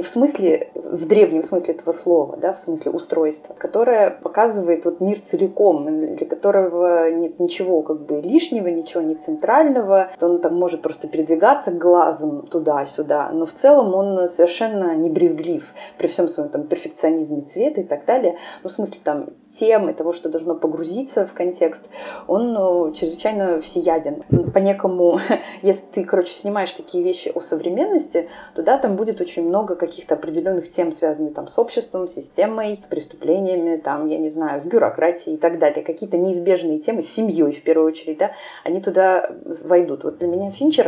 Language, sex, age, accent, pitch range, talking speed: Russian, female, 20-39, native, 165-210 Hz, 170 wpm